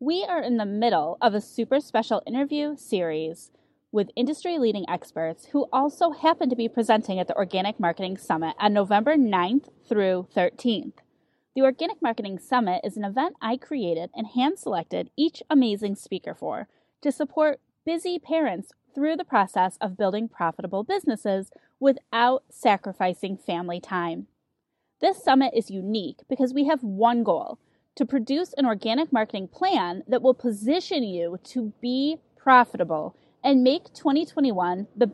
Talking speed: 145 wpm